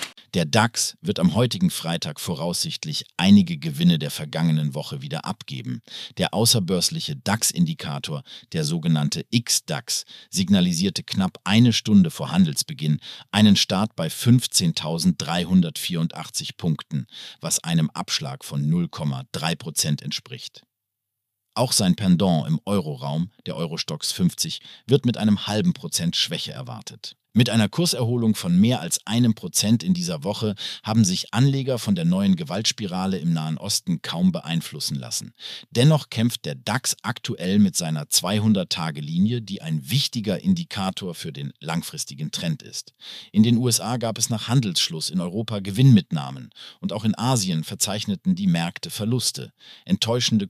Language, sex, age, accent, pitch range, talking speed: German, male, 50-69, German, 100-165 Hz, 135 wpm